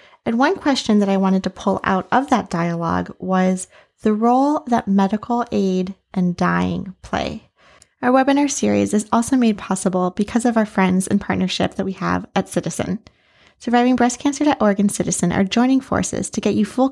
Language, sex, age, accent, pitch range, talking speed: English, female, 20-39, American, 190-235 Hz, 175 wpm